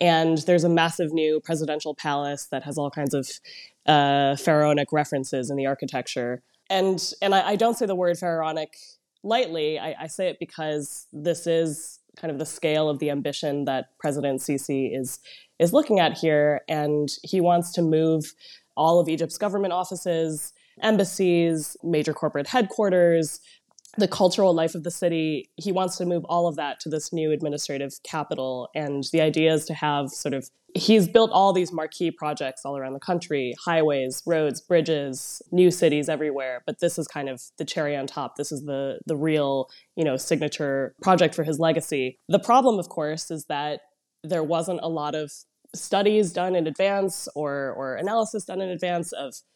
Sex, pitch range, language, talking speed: female, 145-175 Hz, English, 180 wpm